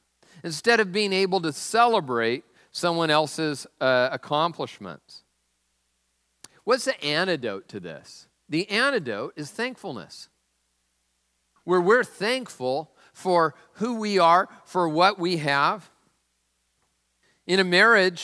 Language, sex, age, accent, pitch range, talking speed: English, male, 50-69, American, 125-175 Hz, 110 wpm